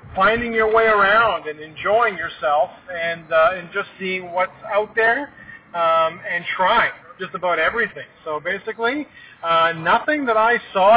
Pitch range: 160-200 Hz